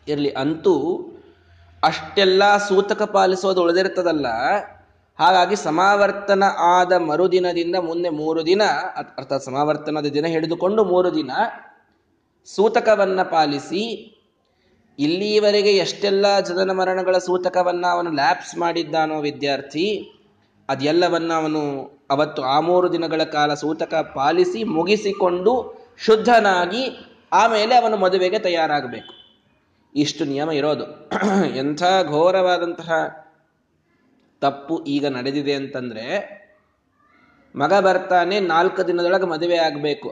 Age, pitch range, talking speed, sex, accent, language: 20-39, 150-190 Hz, 90 wpm, male, native, Kannada